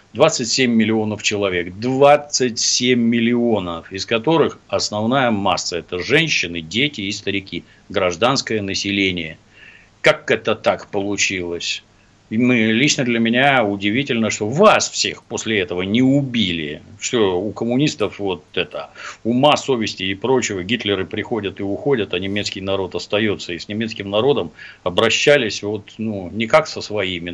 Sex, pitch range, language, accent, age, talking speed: male, 100-145 Hz, Russian, native, 60-79, 130 wpm